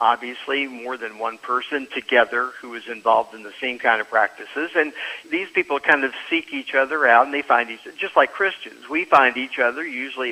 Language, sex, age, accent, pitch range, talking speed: English, male, 50-69, American, 125-150 Hz, 215 wpm